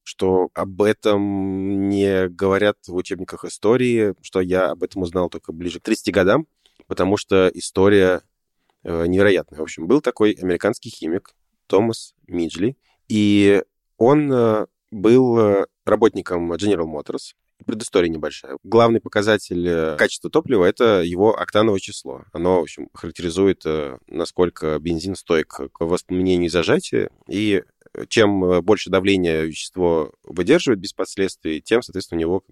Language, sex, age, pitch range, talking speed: Russian, male, 20-39, 85-105 Hz, 130 wpm